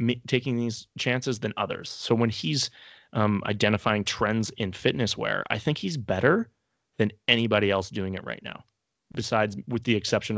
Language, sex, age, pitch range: English, male, 30-49, 105-130 Hz